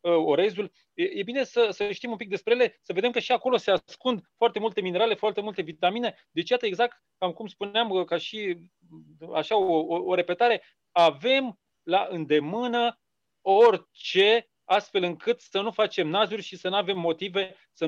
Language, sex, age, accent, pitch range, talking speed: Romanian, male, 30-49, native, 165-225 Hz, 180 wpm